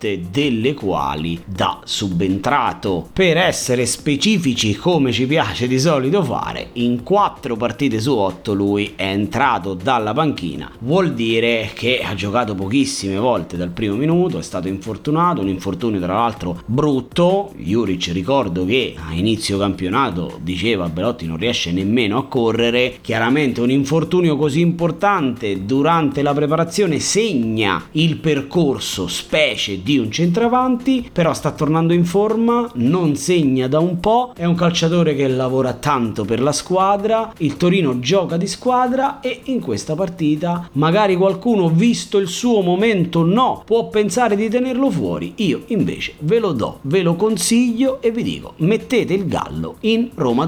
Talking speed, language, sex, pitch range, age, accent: 150 wpm, Italian, male, 115-190 Hz, 30-49, native